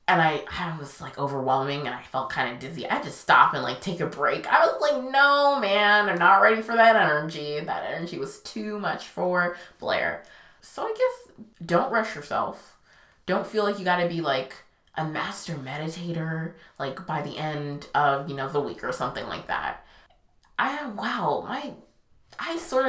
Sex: female